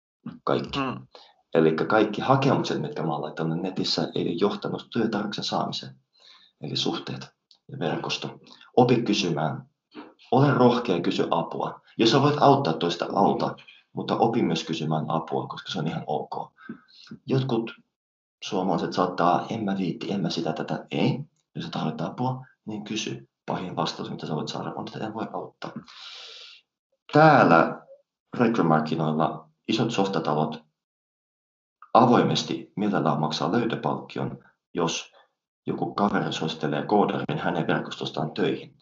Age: 30-49